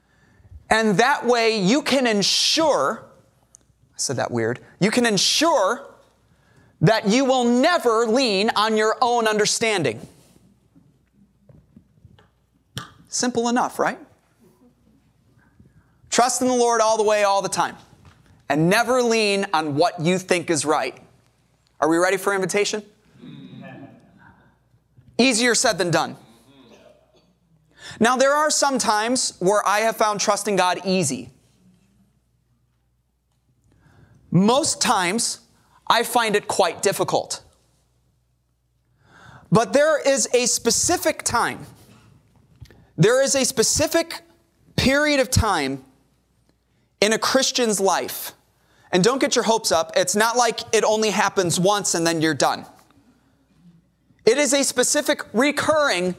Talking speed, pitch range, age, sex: 120 wpm, 175-245 Hz, 30-49, male